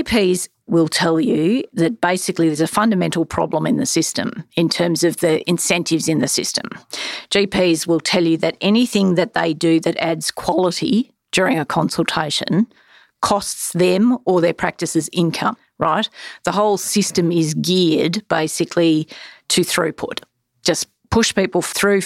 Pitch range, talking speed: 165-190 Hz, 150 wpm